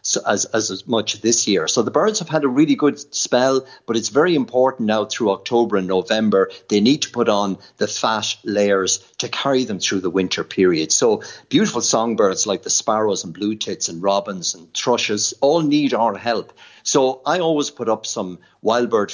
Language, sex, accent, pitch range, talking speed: English, male, Irish, 100-130 Hz, 200 wpm